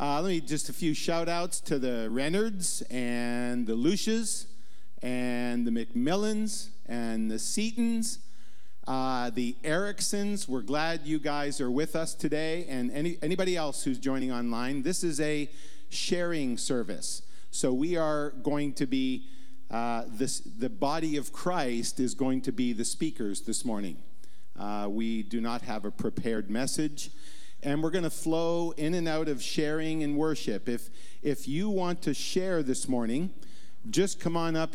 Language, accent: English, American